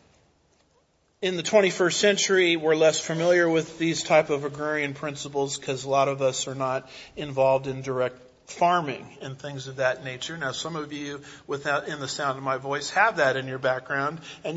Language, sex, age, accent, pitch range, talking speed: English, male, 40-59, American, 145-185 Hz, 190 wpm